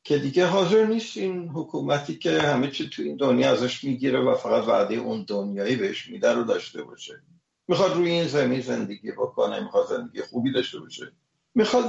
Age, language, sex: 50-69, English, male